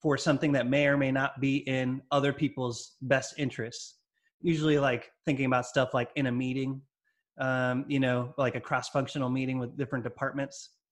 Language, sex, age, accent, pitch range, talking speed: English, male, 30-49, American, 130-155 Hz, 175 wpm